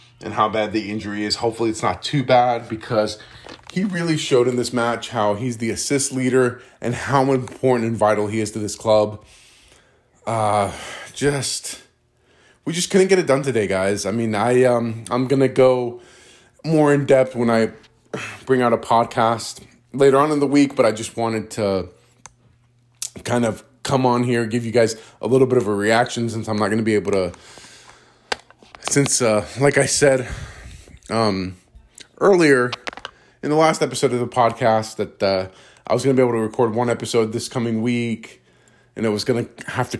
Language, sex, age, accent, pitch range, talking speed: English, male, 20-39, American, 110-130 Hz, 190 wpm